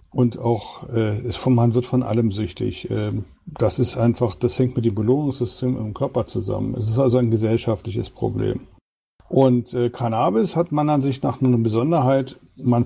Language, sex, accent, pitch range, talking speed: German, male, German, 120-135 Hz, 180 wpm